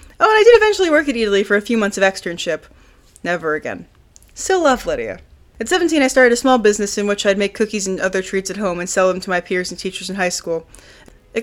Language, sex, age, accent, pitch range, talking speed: English, female, 20-39, American, 185-240 Hz, 250 wpm